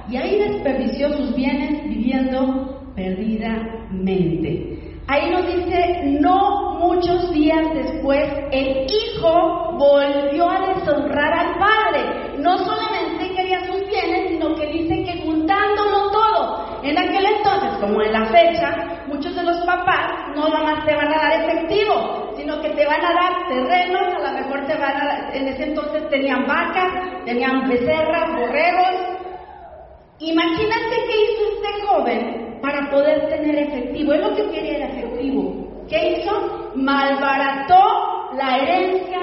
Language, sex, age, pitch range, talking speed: Spanish, female, 40-59, 285-375 Hz, 140 wpm